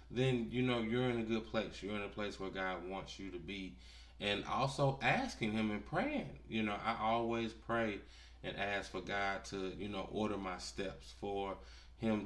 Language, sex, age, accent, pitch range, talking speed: English, male, 20-39, American, 95-110 Hz, 200 wpm